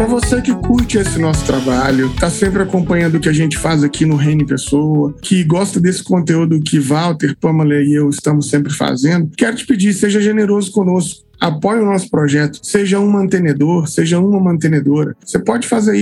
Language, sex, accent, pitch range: Portuguese, male, Brazilian, 155-215 Hz